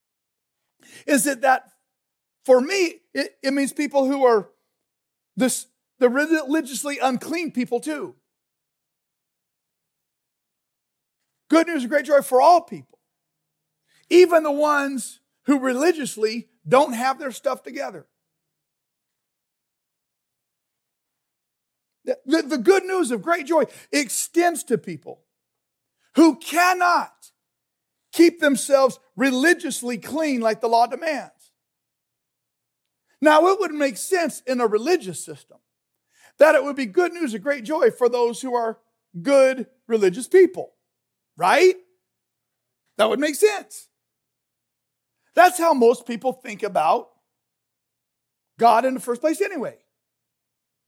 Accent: American